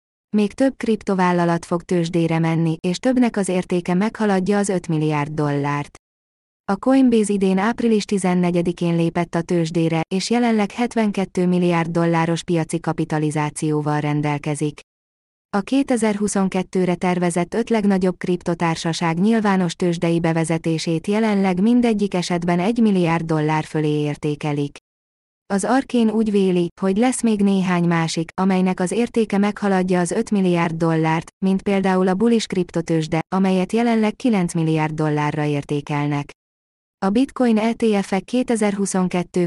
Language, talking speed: Hungarian, 120 wpm